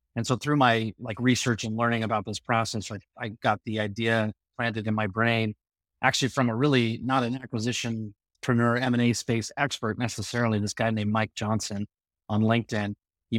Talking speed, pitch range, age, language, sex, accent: 180 wpm, 105-115 Hz, 30-49, English, male, American